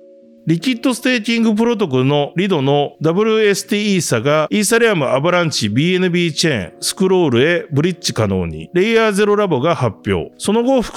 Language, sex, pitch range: Japanese, male, 125-190 Hz